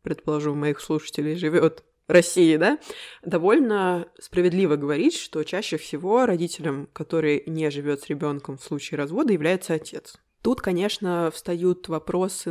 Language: Russian